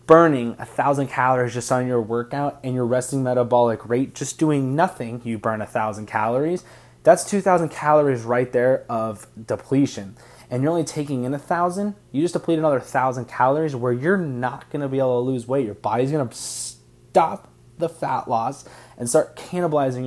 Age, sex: 20-39, male